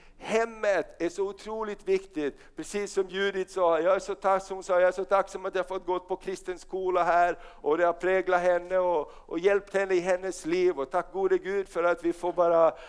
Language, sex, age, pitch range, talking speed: Swedish, male, 60-79, 175-215 Hz, 220 wpm